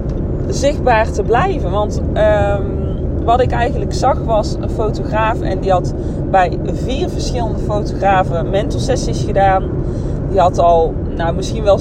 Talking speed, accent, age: 140 wpm, Dutch, 20-39